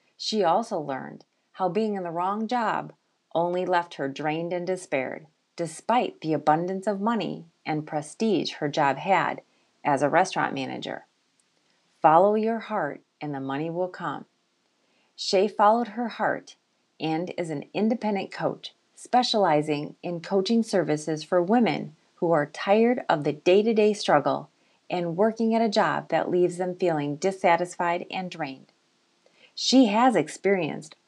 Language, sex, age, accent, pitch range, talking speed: English, female, 30-49, American, 160-210 Hz, 145 wpm